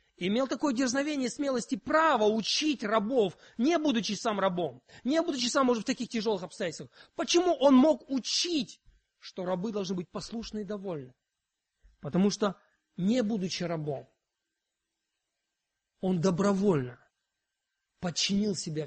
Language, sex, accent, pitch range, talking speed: Russian, male, native, 175-255 Hz, 130 wpm